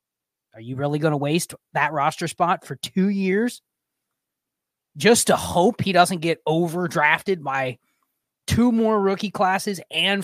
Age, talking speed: 20-39, 145 wpm